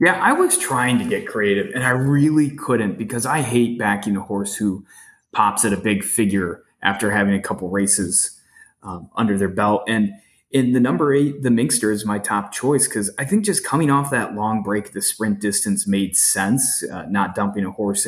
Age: 20-39